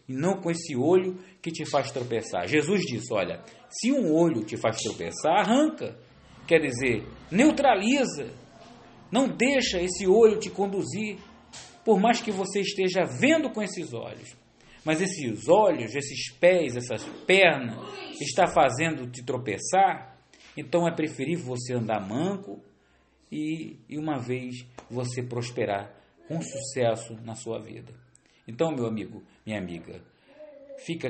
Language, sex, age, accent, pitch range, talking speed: English, male, 40-59, Brazilian, 120-185 Hz, 135 wpm